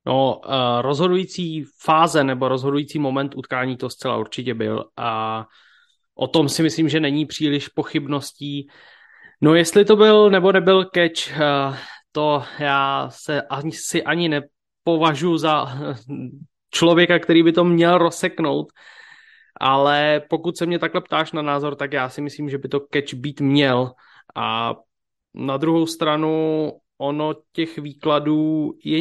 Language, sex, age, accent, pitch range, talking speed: English, male, 20-39, Czech, 140-170 Hz, 135 wpm